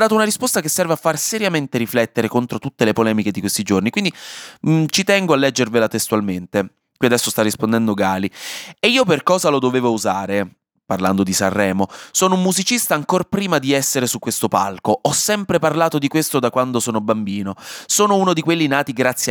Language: Italian